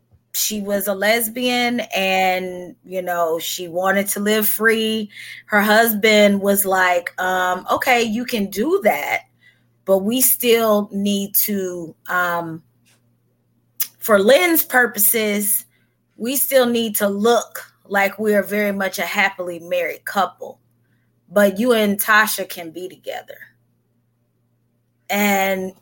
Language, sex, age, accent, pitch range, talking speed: English, female, 20-39, American, 180-215 Hz, 125 wpm